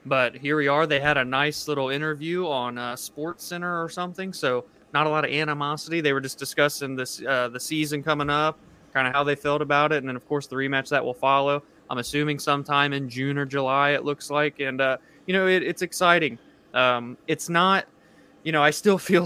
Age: 20-39